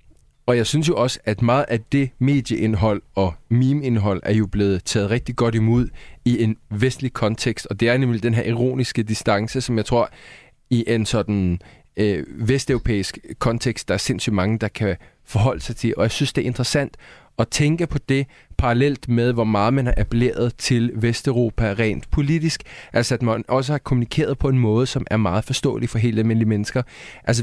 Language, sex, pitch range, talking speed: Danish, male, 110-135 Hz, 195 wpm